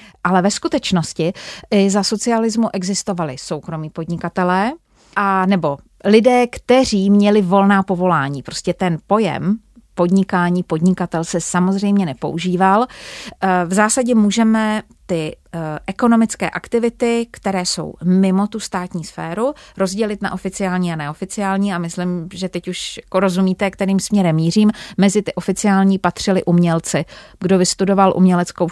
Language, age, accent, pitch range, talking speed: Czech, 30-49, native, 180-210 Hz, 120 wpm